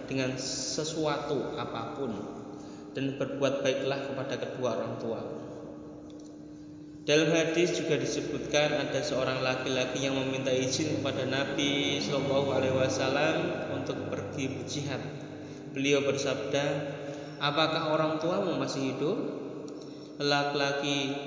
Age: 20-39